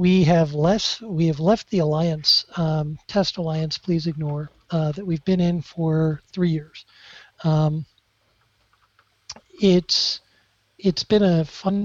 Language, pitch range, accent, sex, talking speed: English, 155-180 Hz, American, male, 135 wpm